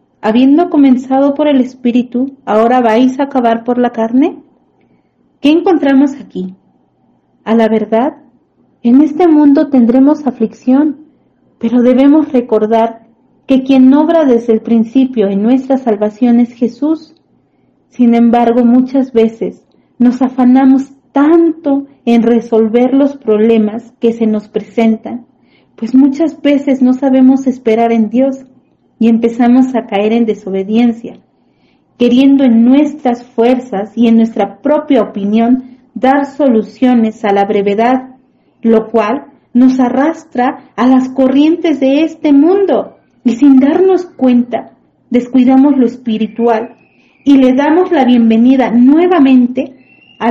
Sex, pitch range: female, 230-275 Hz